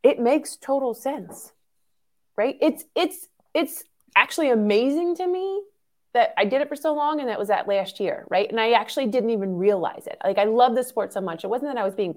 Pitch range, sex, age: 210-305 Hz, female, 30-49